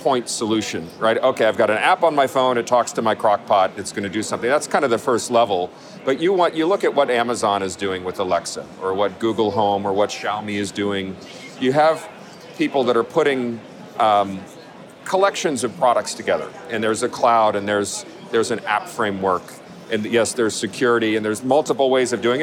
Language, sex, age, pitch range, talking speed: English, male, 40-59, 105-130 Hz, 210 wpm